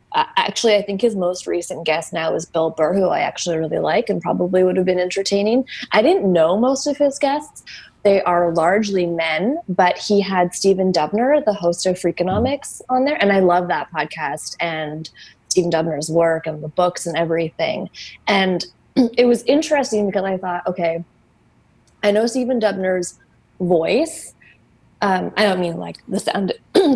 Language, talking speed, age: English, 175 wpm, 20-39